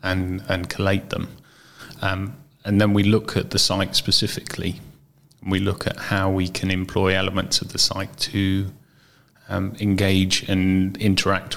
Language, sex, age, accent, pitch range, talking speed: English, male, 30-49, British, 95-105 Hz, 155 wpm